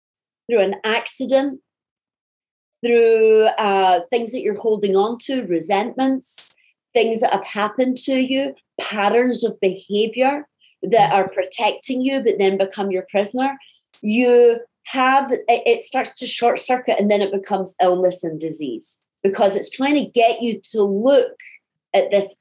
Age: 40-59